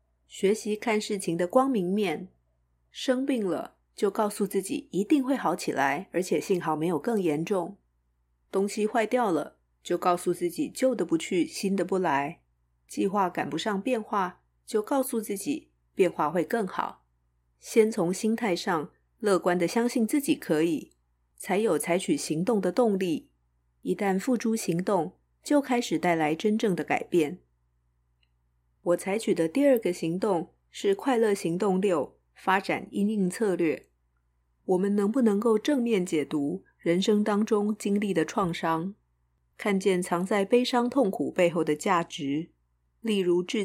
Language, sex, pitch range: Chinese, female, 155-215 Hz